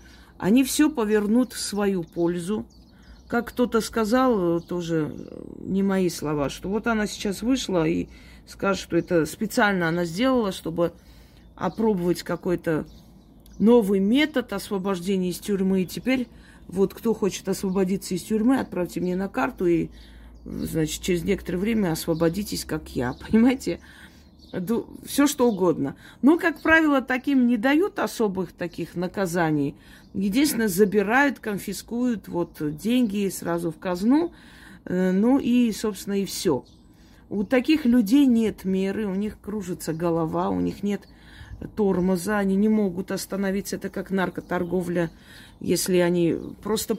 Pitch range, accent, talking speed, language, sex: 175-225 Hz, native, 130 wpm, Russian, female